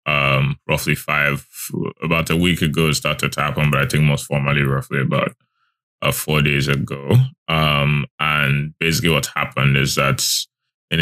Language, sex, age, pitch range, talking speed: English, male, 20-39, 75-80 Hz, 160 wpm